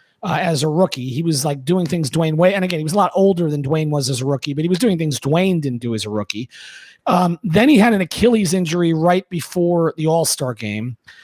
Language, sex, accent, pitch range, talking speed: English, male, American, 165-200 Hz, 250 wpm